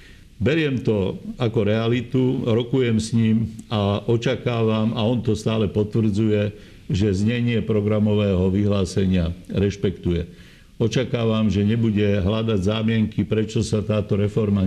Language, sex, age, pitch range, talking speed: Slovak, male, 50-69, 100-120 Hz, 115 wpm